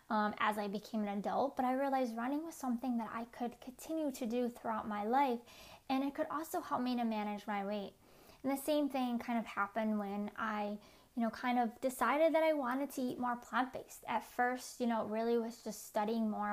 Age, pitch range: 20-39, 215-260 Hz